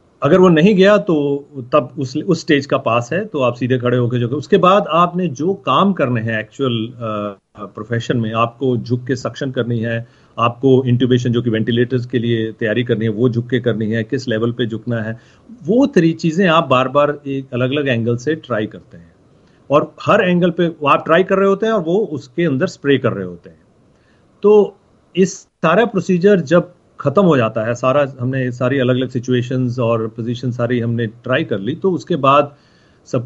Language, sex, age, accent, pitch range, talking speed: Hindi, male, 40-59, native, 120-155 Hz, 205 wpm